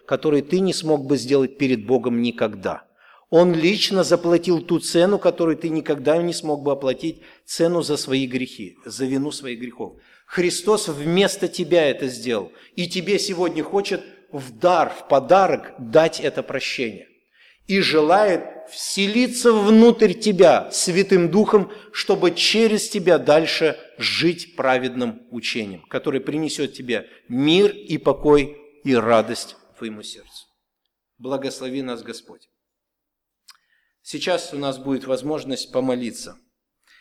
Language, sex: Russian, male